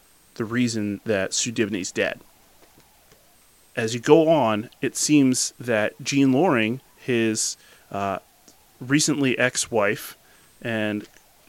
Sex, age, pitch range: male, 30-49, 105-130 Hz